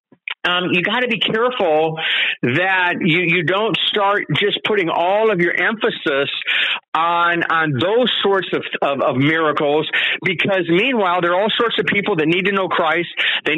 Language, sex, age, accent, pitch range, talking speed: English, male, 50-69, American, 170-220 Hz, 170 wpm